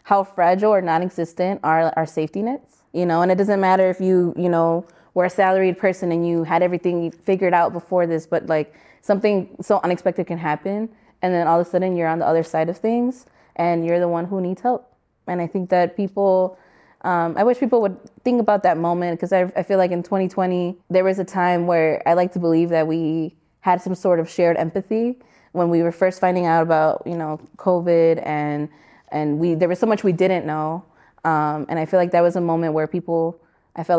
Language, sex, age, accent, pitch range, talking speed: English, female, 20-39, American, 165-185 Hz, 225 wpm